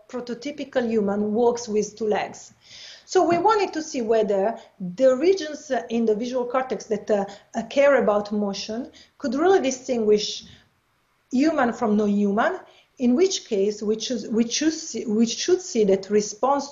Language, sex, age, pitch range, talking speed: English, female, 40-59, 205-270 Hz, 140 wpm